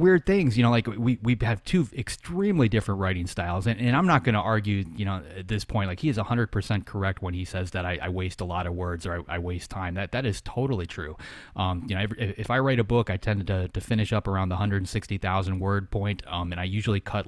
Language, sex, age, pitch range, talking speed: English, male, 30-49, 95-110 Hz, 265 wpm